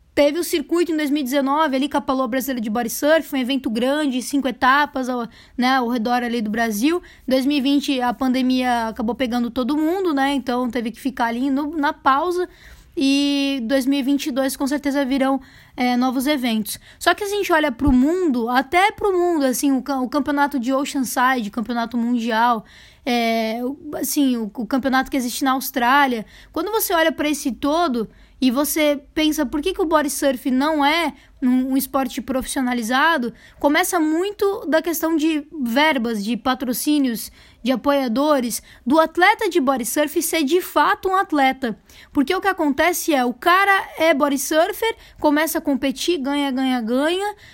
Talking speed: 170 wpm